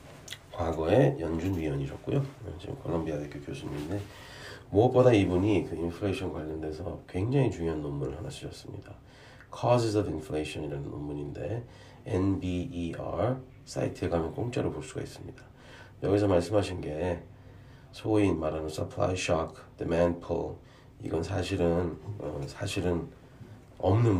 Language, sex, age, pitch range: Korean, male, 40-59, 85-120 Hz